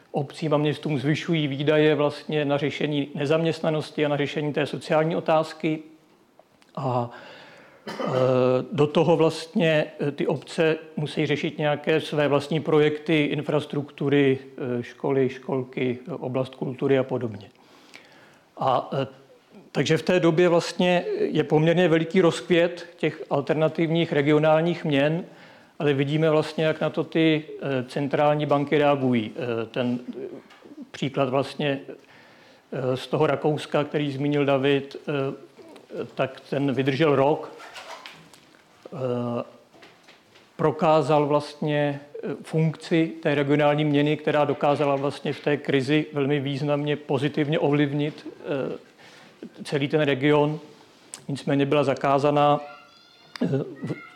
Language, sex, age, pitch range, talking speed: Czech, male, 50-69, 140-160 Hz, 105 wpm